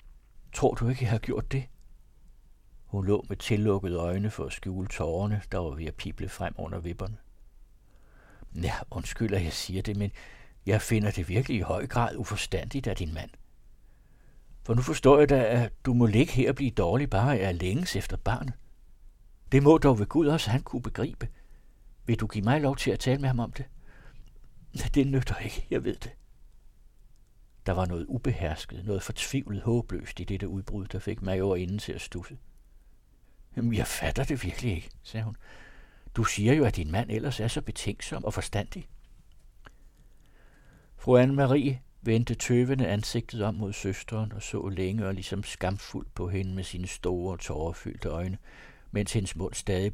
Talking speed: 180 wpm